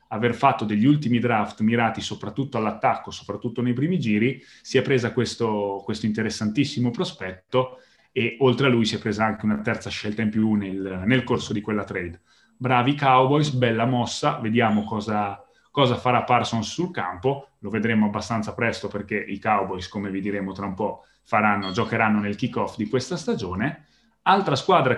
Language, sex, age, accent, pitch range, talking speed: Italian, male, 30-49, native, 105-125 Hz, 170 wpm